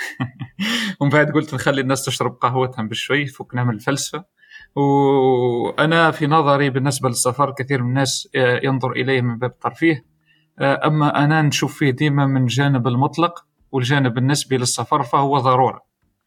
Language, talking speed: Arabic, 135 wpm